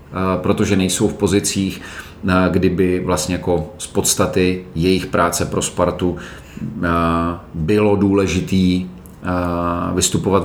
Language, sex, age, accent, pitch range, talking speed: Czech, male, 40-59, native, 85-95 Hz, 90 wpm